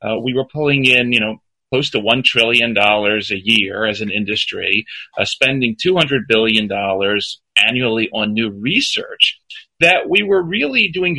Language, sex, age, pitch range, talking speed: English, male, 40-59, 110-145 Hz, 155 wpm